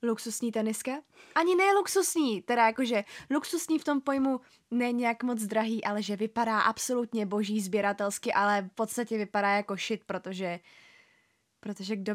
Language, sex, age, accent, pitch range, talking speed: Czech, female, 20-39, native, 210-275 Hz, 150 wpm